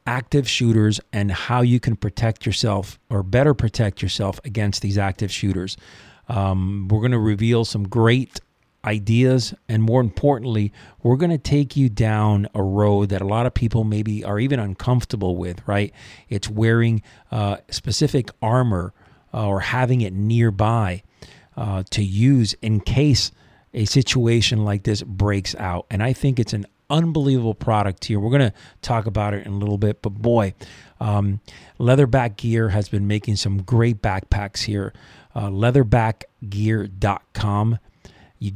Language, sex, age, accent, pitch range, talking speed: English, male, 40-59, American, 100-125 Hz, 155 wpm